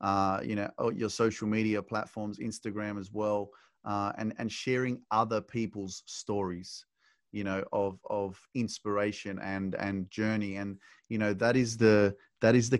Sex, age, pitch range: male, 30-49, 100-115 Hz